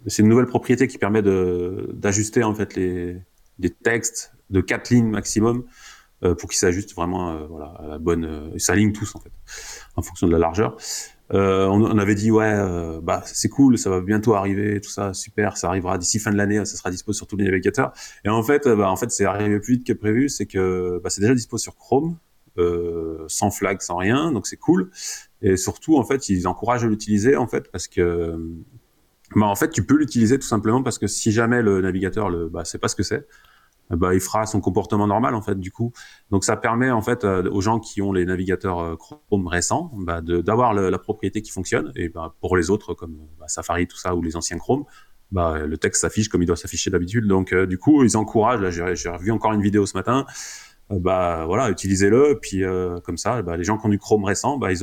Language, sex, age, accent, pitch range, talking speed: French, male, 30-49, French, 90-110 Hz, 235 wpm